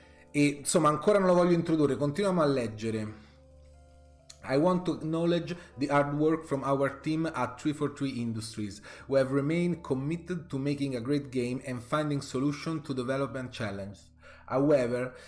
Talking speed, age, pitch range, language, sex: 155 wpm, 30-49, 120-145 Hz, Italian, male